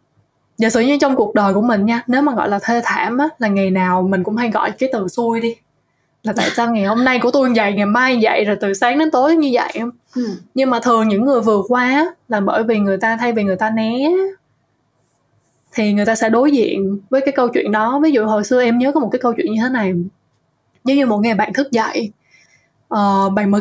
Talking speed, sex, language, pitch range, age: 255 wpm, female, Vietnamese, 205-255 Hz, 20-39